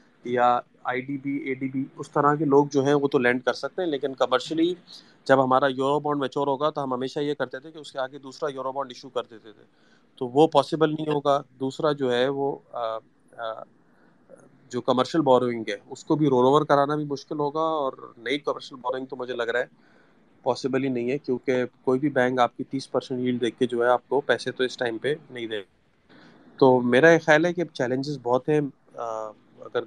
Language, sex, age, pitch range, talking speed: Urdu, male, 30-49, 130-150 Hz, 225 wpm